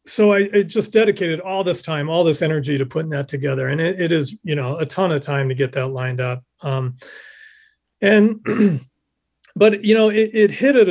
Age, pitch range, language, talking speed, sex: 40-59, 140-200 Hz, English, 215 wpm, male